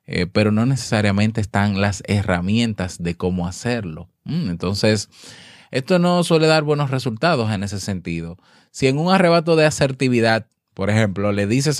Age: 20-39